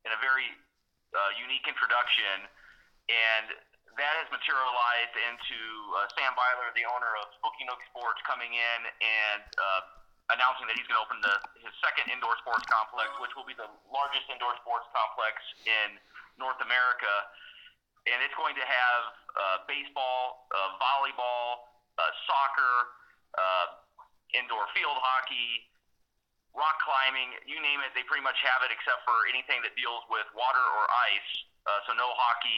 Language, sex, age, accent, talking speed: English, male, 30-49, American, 155 wpm